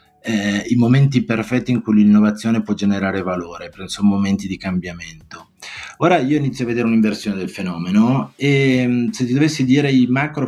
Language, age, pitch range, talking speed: Italian, 30-49, 100-125 Hz, 165 wpm